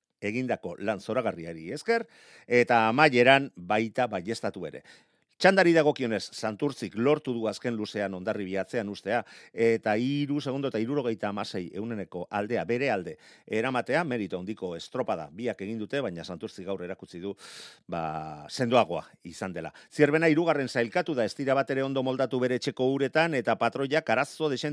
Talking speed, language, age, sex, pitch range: 135 wpm, Spanish, 40-59, male, 110-155 Hz